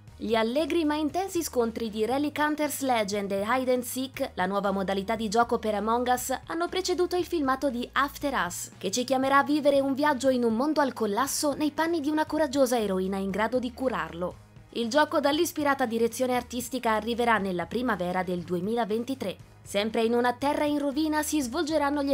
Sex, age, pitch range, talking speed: female, 20-39, 215-290 Hz, 185 wpm